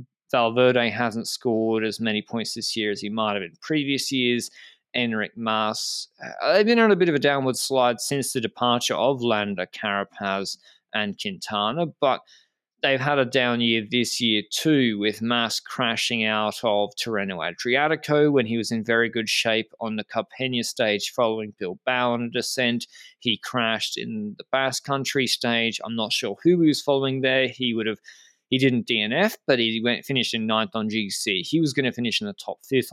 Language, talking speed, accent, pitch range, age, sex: English, 185 wpm, Australian, 110-140 Hz, 20-39, male